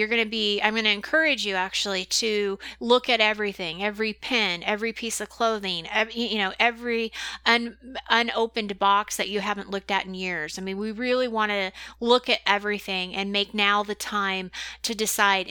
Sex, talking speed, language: female, 195 wpm, English